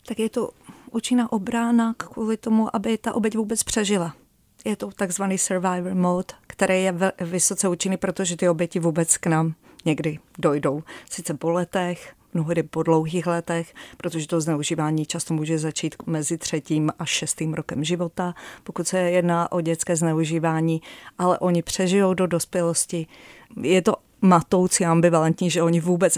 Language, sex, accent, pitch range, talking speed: Czech, female, native, 160-180 Hz, 155 wpm